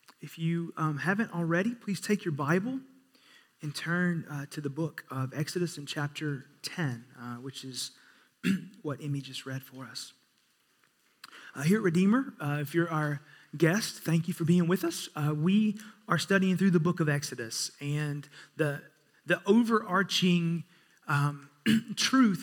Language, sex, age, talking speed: English, male, 30-49, 160 wpm